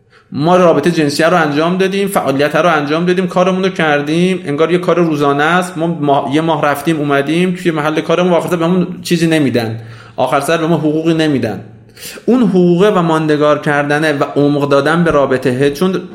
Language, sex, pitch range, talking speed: Persian, male, 140-180 Hz, 180 wpm